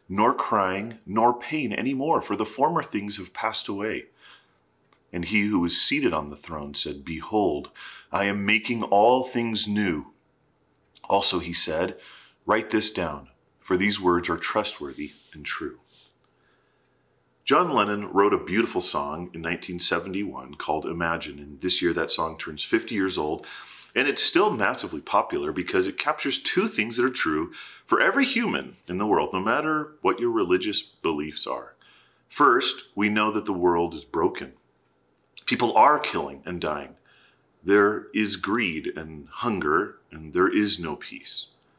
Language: English